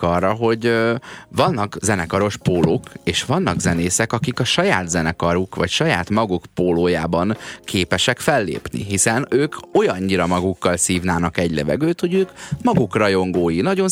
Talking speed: 135 wpm